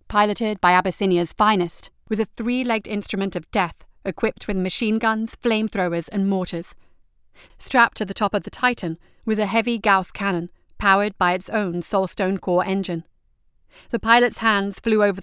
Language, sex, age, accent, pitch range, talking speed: English, female, 40-59, British, 180-220 Hz, 160 wpm